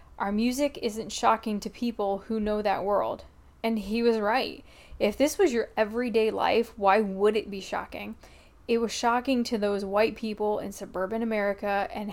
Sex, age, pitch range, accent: female, 10-29, 205-230 Hz, American